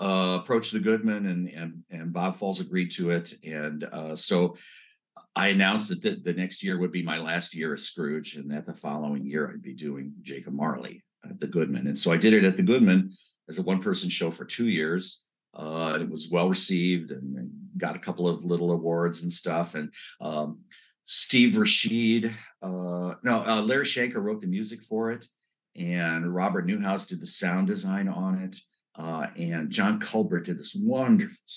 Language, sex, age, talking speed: English, male, 50-69, 190 wpm